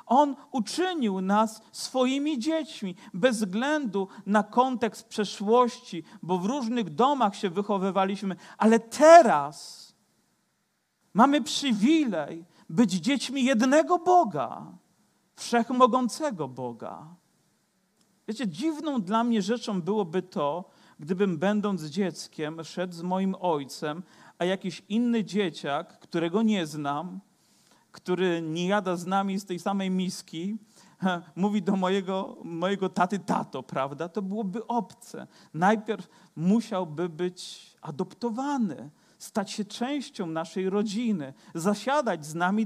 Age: 40-59